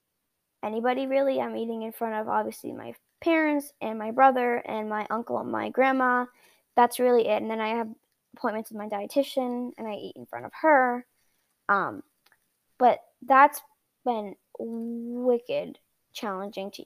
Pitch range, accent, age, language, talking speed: 210-250 Hz, American, 10-29, English, 155 wpm